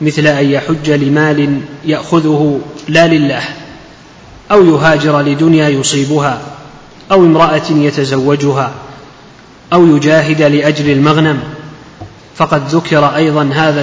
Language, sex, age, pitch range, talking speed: Arabic, male, 30-49, 145-160 Hz, 95 wpm